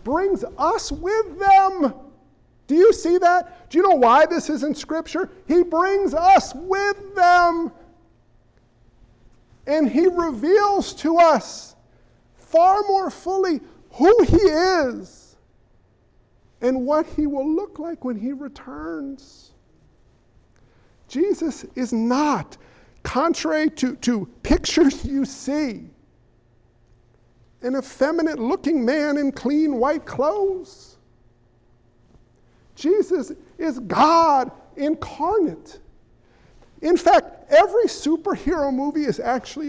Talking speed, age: 105 wpm, 50-69